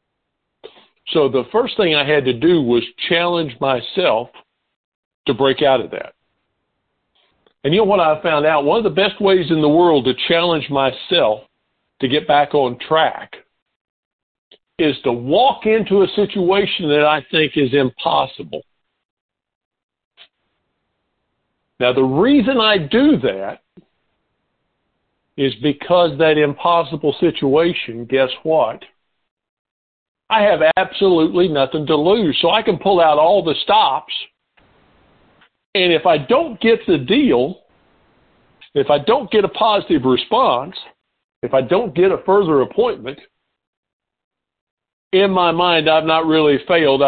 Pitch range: 135-185 Hz